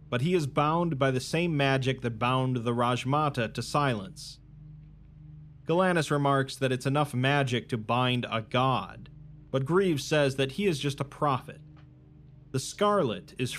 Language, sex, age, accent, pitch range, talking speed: English, male, 30-49, American, 125-150 Hz, 160 wpm